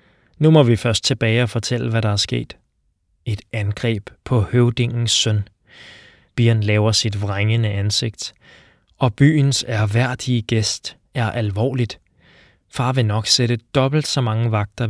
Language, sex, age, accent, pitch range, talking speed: Danish, male, 20-39, native, 110-125 Hz, 140 wpm